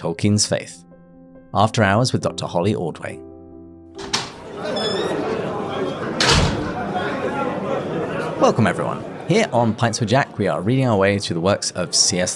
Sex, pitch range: male, 90-115 Hz